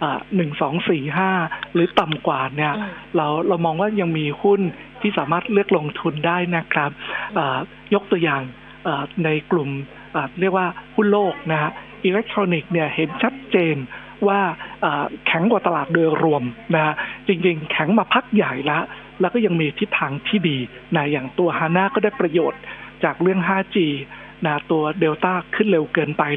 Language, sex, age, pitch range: Thai, male, 60-79, 155-195 Hz